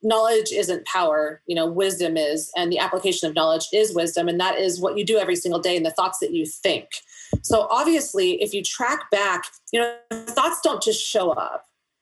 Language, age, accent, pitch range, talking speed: English, 30-49, American, 180-225 Hz, 210 wpm